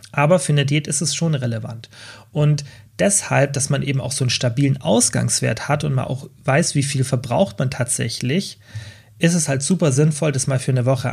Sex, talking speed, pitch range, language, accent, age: male, 205 wpm, 125-155 Hz, German, German, 30-49